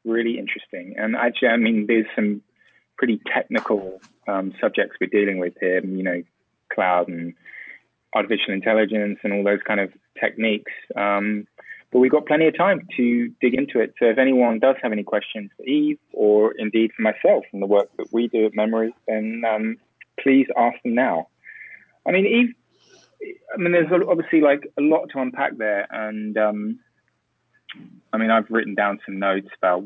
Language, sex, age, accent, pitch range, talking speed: English, male, 20-39, British, 100-125 Hz, 180 wpm